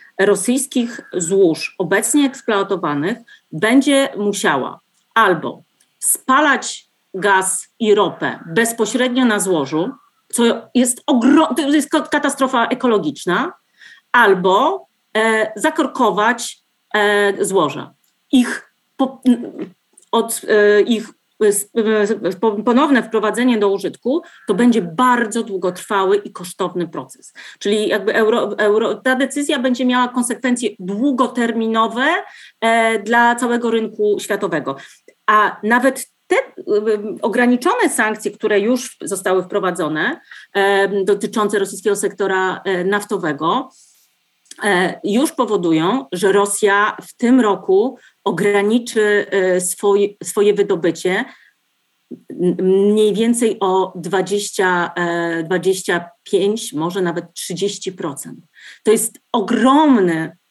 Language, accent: Polish, native